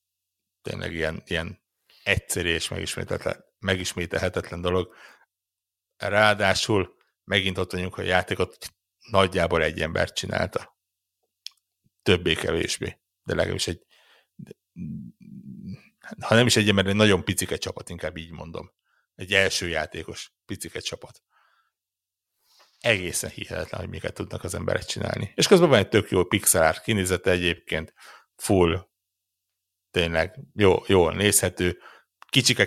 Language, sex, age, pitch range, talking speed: Hungarian, male, 60-79, 90-105 Hz, 115 wpm